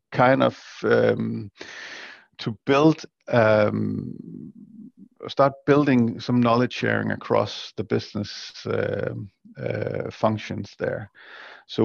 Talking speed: 95 wpm